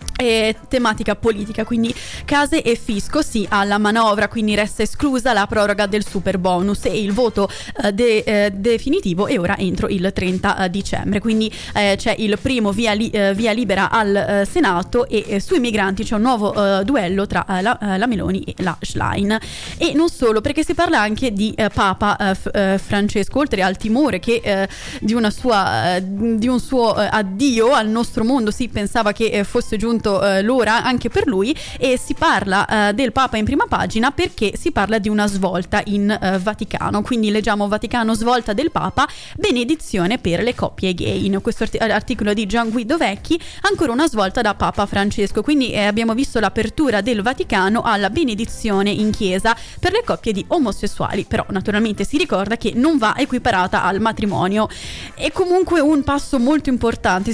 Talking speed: 180 wpm